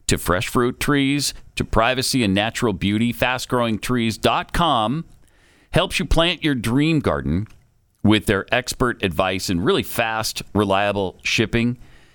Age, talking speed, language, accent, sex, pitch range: 40-59, 125 wpm, English, American, male, 105-150 Hz